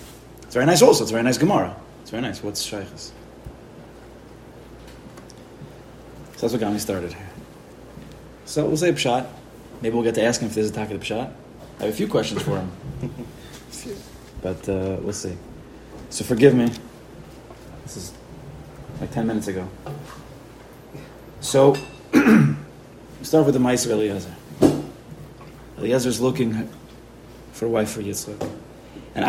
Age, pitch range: 30-49, 110-145 Hz